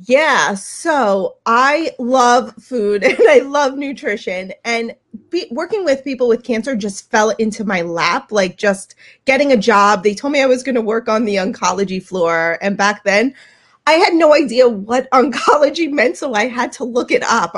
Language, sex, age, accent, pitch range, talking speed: English, female, 30-49, American, 195-260 Hz, 185 wpm